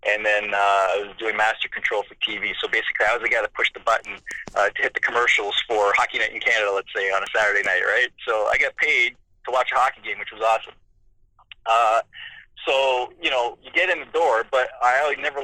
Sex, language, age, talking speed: male, English, 20-39, 235 wpm